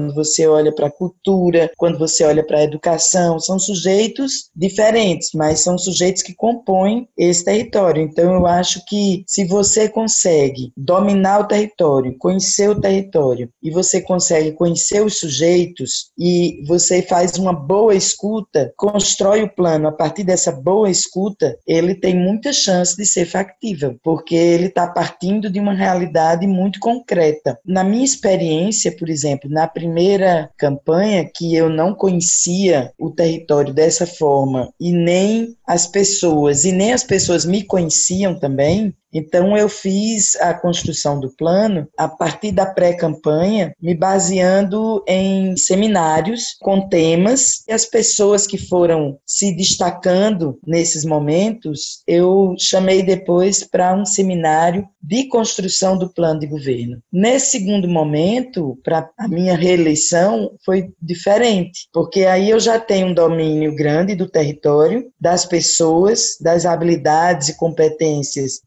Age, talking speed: 20-39, 140 wpm